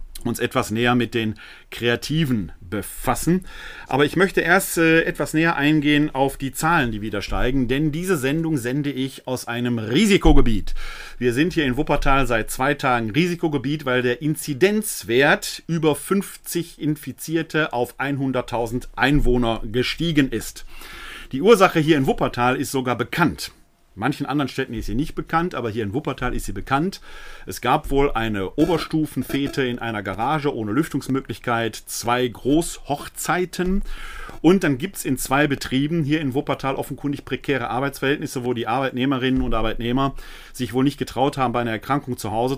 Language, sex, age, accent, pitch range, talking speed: German, male, 40-59, German, 120-145 Hz, 155 wpm